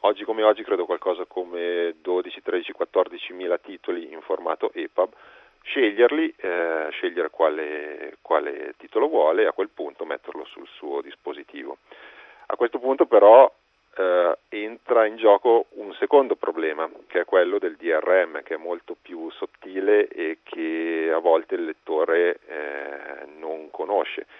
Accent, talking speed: native, 145 wpm